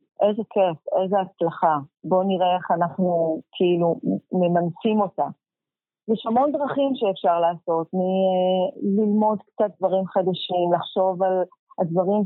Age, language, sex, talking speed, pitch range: 30-49, Hebrew, female, 115 wpm, 180-225 Hz